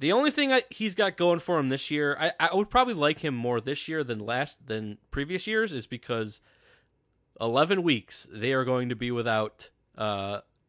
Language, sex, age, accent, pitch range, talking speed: English, male, 20-39, American, 115-150 Hz, 195 wpm